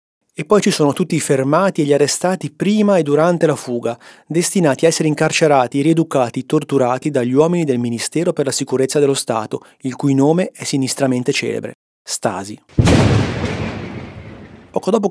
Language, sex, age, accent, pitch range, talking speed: Italian, male, 30-49, native, 130-165 Hz, 155 wpm